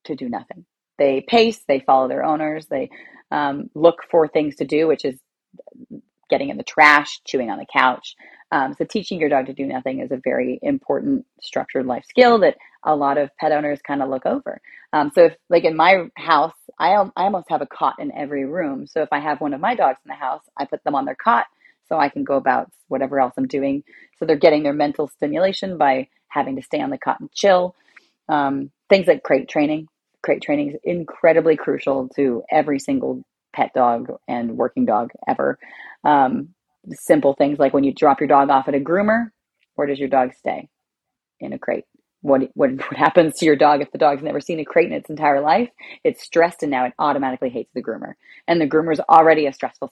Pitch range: 140-195 Hz